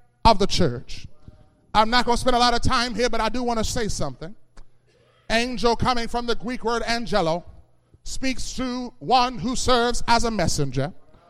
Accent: American